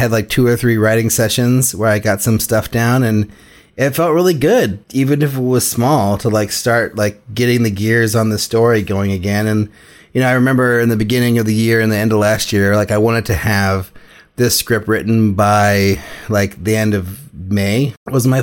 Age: 30-49